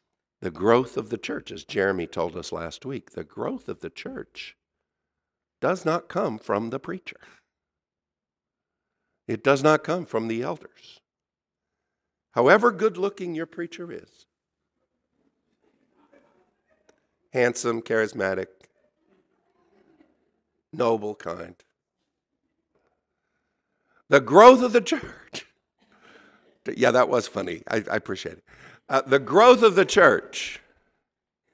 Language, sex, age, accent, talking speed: English, male, 60-79, American, 110 wpm